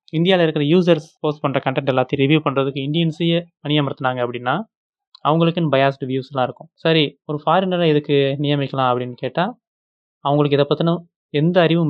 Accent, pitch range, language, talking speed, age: native, 130-155 Hz, Tamil, 140 wpm, 20-39